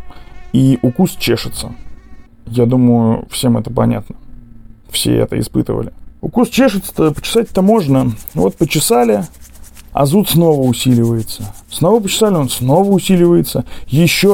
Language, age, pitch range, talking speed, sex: Russian, 20-39, 115-160 Hz, 115 wpm, male